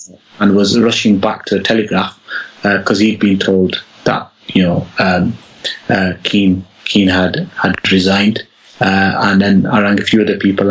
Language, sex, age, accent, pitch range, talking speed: English, male, 30-49, British, 95-105 Hz, 175 wpm